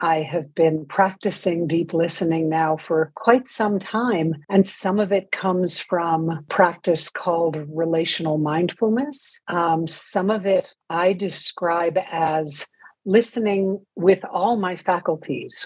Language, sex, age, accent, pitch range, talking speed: English, female, 60-79, American, 165-205 Hz, 125 wpm